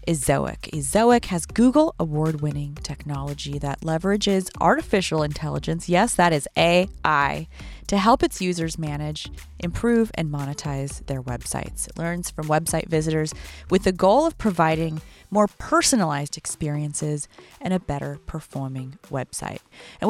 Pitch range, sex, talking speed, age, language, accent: 145-190 Hz, female, 130 wpm, 20-39, English, American